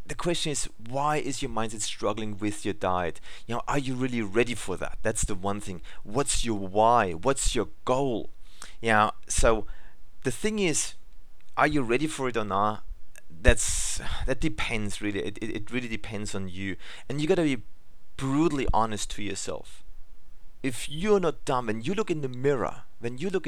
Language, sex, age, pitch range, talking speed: English, male, 30-49, 100-135 Hz, 190 wpm